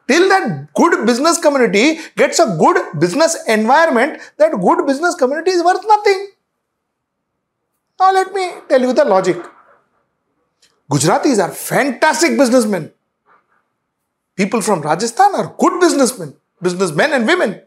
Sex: male